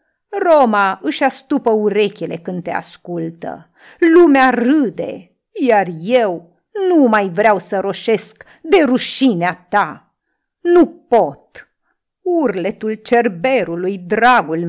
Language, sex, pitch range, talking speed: Romanian, female, 195-260 Hz, 100 wpm